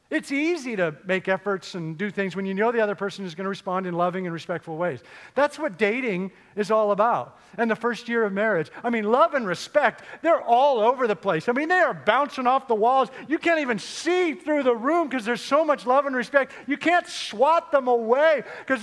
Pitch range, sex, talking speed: 165-255 Hz, male, 230 wpm